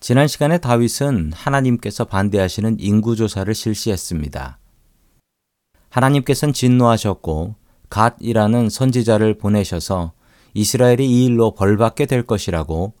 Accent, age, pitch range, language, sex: native, 40-59, 95-125 Hz, Korean, male